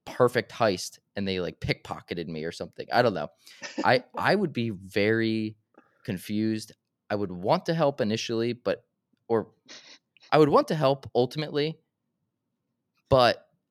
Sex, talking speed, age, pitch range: male, 145 wpm, 20-39, 110-170 Hz